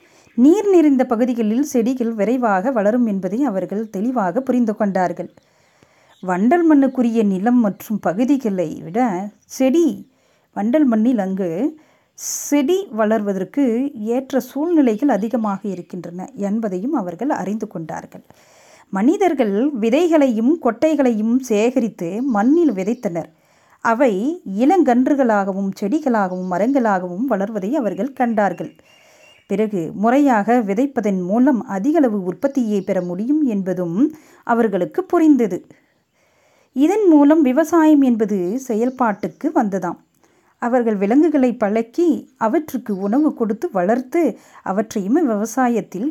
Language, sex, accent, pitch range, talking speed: Tamil, female, native, 205-280 Hz, 90 wpm